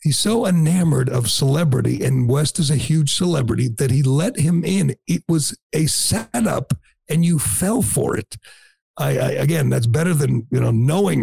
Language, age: English, 60-79